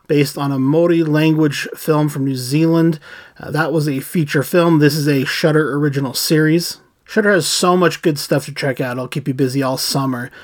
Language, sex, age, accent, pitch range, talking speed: English, male, 30-49, American, 135-160 Hz, 200 wpm